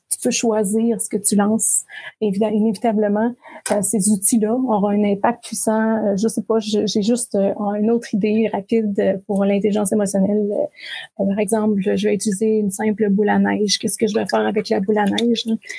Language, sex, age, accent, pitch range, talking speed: French, female, 30-49, Canadian, 205-225 Hz, 180 wpm